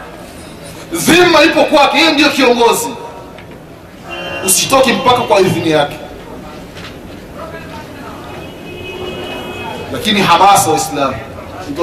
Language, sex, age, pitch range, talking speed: Swahili, male, 30-49, 185-275 Hz, 80 wpm